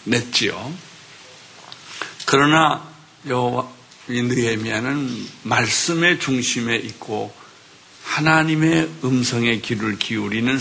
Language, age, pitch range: Korean, 60-79, 115-150 Hz